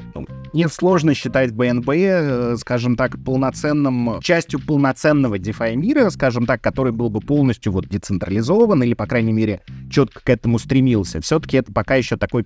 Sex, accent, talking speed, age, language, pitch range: male, native, 155 wpm, 20-39, Russian, 110-150 Hz